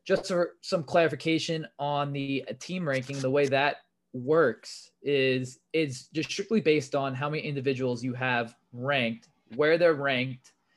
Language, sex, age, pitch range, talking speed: English, male, 20-39, 130-155 Hz, 150 wpm